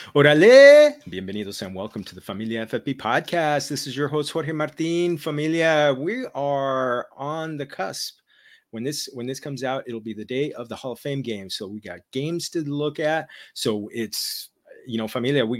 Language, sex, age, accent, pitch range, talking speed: English, male, 30-49, American, 105-140 Hz, 190 wpm